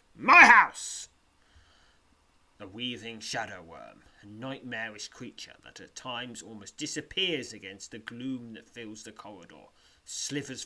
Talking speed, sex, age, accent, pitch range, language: 125 wpm, male, 30-49, British, 90-130 Hz, English